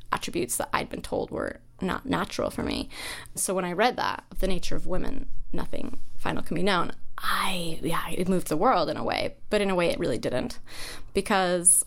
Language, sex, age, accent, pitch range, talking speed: English, female, 20-39, American, 170-200 Hz, 205 wpm